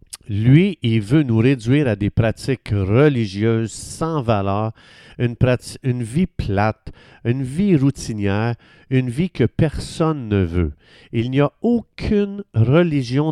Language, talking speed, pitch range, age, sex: French, 135 wpm, 110-150 Hz, 50-69, male